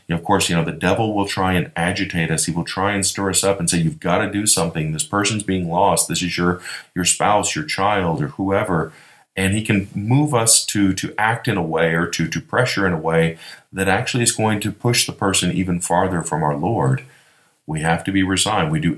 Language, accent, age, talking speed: English, American, 40-59, 240 wpm